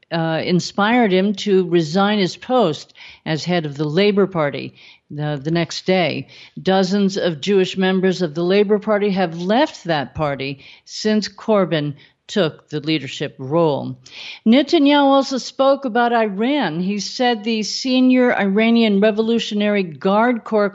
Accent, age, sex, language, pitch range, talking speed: American, 50-69, female, English, 180-240 Hz, 140 wpm